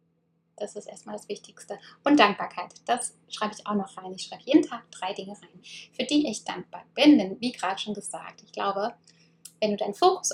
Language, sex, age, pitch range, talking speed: German, female, 10-29, 190-250 Hz, 210 wpm